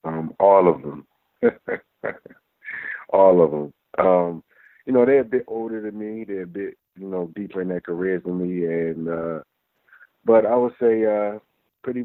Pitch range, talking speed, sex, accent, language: 85-105 Hz, 175 wpm, male, American, English